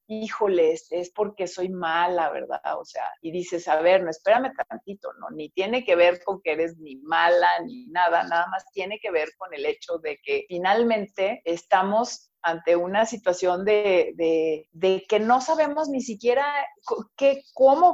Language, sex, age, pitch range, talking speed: Spanish, female, 50-69, 190-250 Hz, 175 wpm